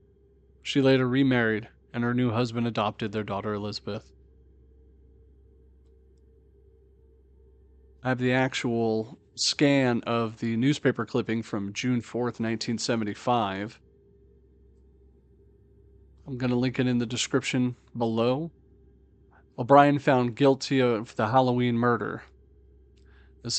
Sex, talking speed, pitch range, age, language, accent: male, 105 wpm, 100-130 Hz, 40-59, English, American